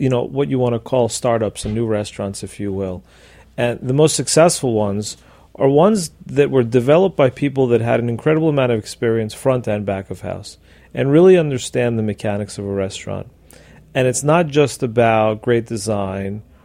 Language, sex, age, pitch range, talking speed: English, male, 40-59, 110-145 Hz, 190 wpm